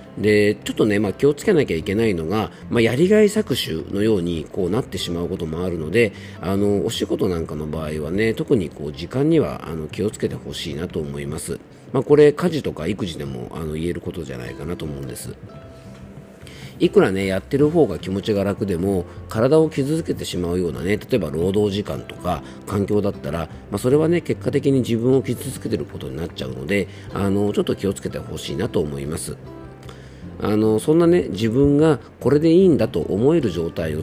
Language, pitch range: Japanese, 80-125 Hz